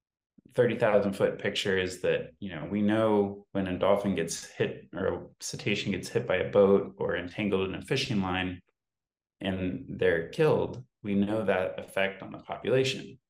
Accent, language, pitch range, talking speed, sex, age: American, English, 95-105 Hz, 170 wpm, male, 20-39